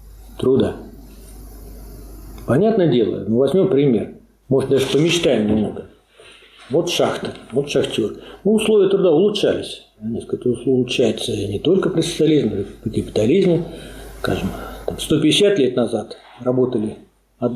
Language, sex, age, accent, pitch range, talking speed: Russian, male, 50-69, native, 125-190 Hz, 100 wpm